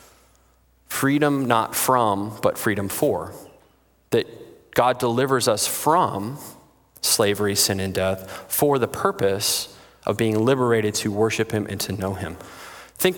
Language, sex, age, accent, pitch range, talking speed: English, male, 20-39, American, 105-135 Hz, 130 wpm